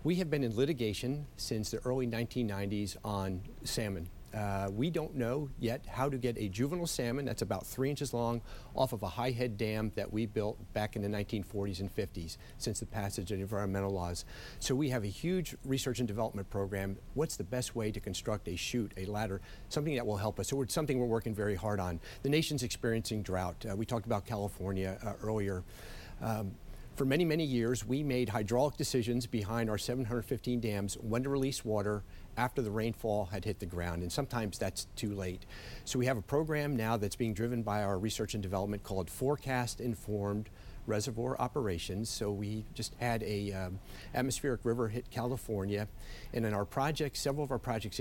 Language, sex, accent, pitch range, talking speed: English, male, American, 100-125 Hz, 195 wpm